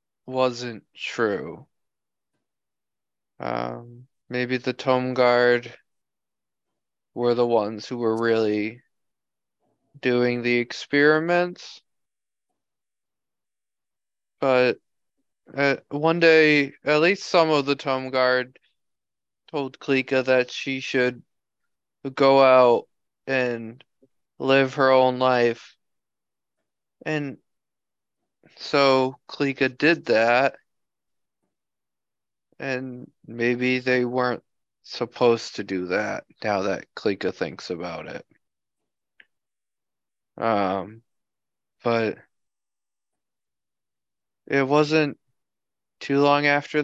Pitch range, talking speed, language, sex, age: 120-145 Hz, 85 wpm, English, male, 20-39